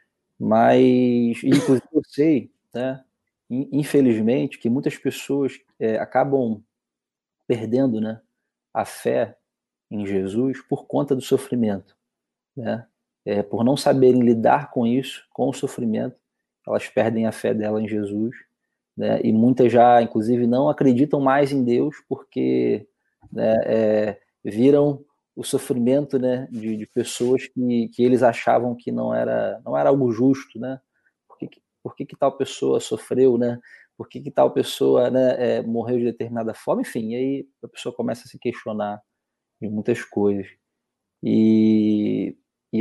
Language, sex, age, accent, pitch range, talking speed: Portuguese, male, 20-39, Brazilian, 110-130 Hz, 145 wpm